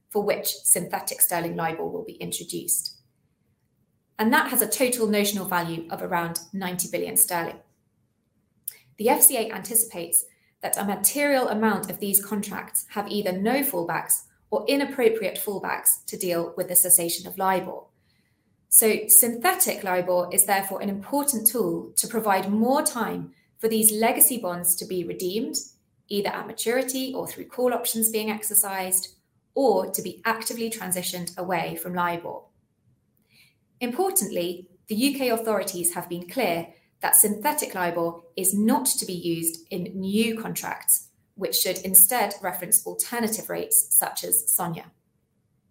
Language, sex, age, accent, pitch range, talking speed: English, female, 20-39, British, 180-225 Hz, 140 wpm